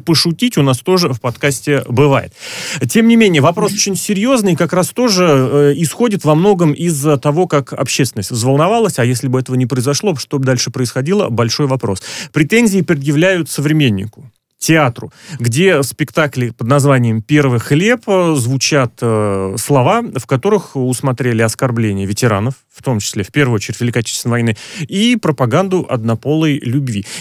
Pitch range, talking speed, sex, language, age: 125-170 Hz, 150 wpm, male, Russian, 30-49